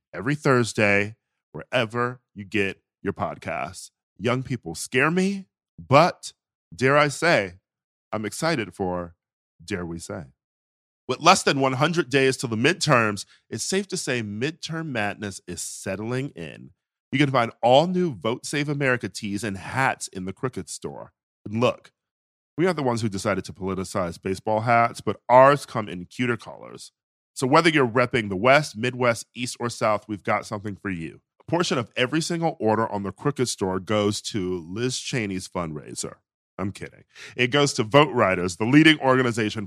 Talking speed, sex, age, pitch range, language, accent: 165 wpm, male, 40-59, 100-135 Hz, English, American